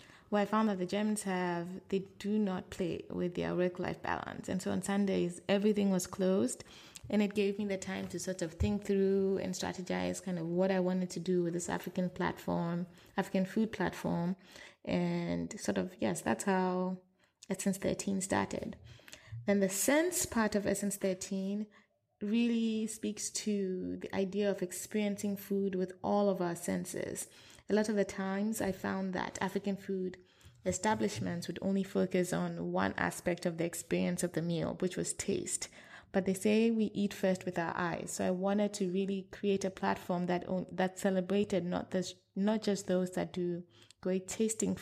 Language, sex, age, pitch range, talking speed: English, female, 20-39, 180-200 Hz, 180 wpm